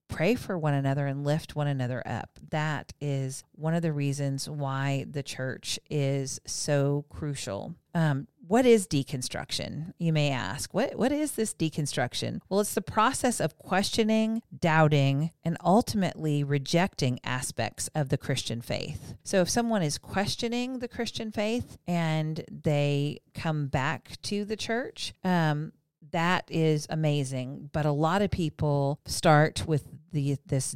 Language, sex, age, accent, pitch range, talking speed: English, female, 40-59, American, 140-180 Hz, 145 wpm